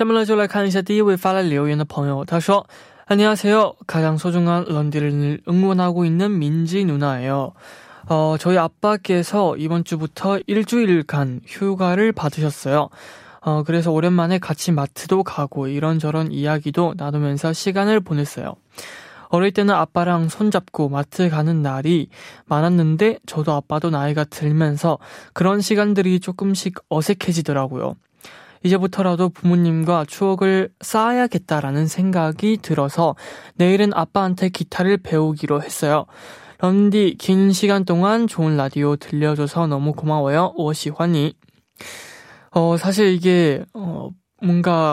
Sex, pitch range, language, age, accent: male, 155-195 Hz, Korean, 20-39, native